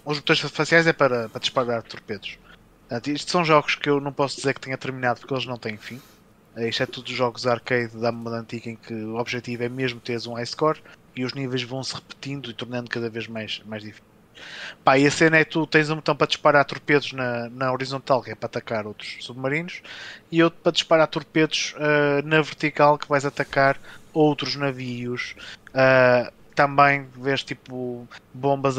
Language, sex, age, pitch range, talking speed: Portuguese, male, 20-39, 120-145 Hz, 200 wpm